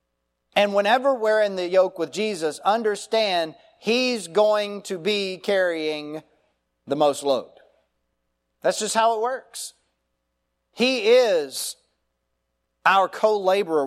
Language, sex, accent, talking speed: English, male, American, 110 wpm